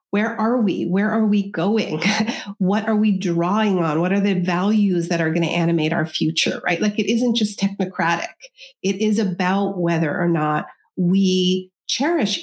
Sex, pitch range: female, 175-220 Hz